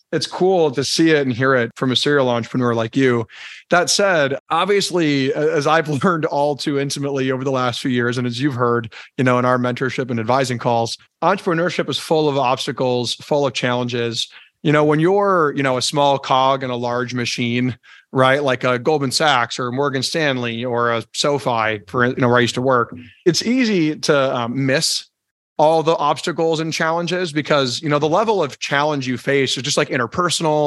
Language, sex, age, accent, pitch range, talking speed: English, male, 30-49, American, 125-155 Hz, 205 wpm